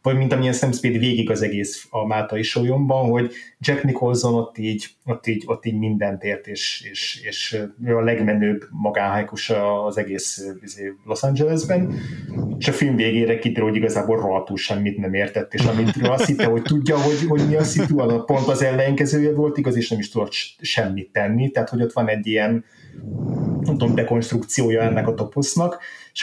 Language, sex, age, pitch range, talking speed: Hungarian, male, 30-49, 110-135 Hz, 180 wpm